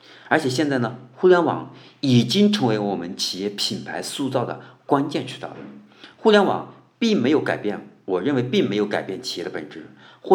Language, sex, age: Chinese, male, 50-69